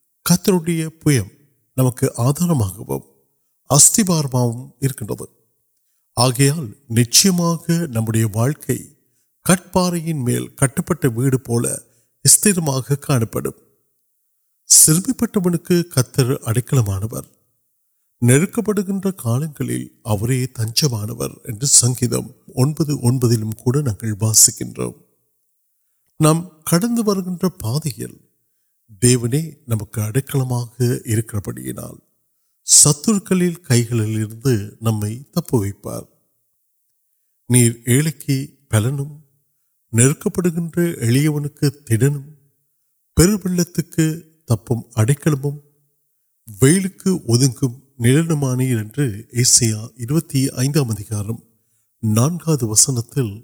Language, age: Urdu, 50-69